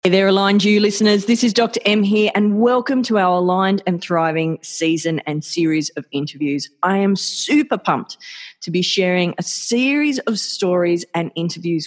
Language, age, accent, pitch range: English, 30-49, Australian, 165-225 Hz